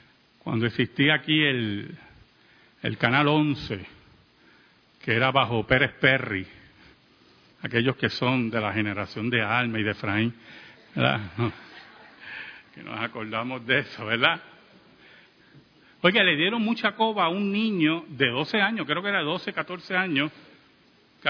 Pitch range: 120-175 Hz